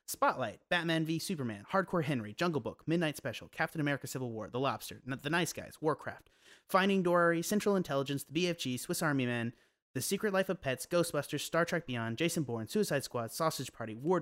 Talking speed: 190 wpm